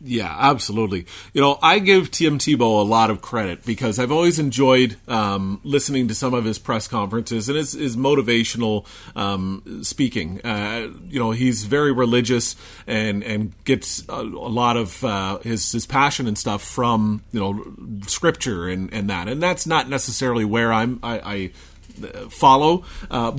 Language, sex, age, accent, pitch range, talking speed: English, male, 30-49, American, 110-140 Hz, 170 wpm